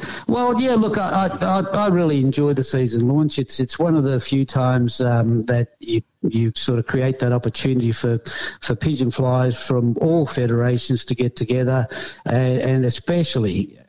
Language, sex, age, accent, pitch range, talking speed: English, male, 60-79, Australian, 125-140 Hz, 175 wpm